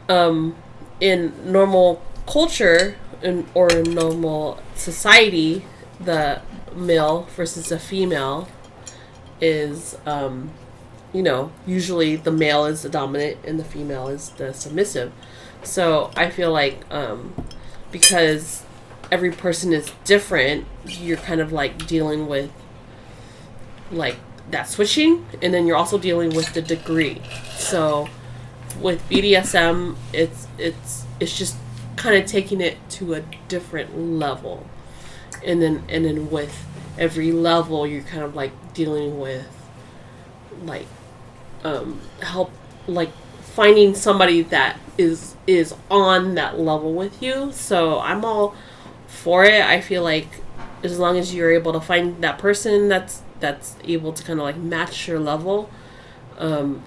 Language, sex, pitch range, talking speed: English, female, 140-180 Hz, 135 wpm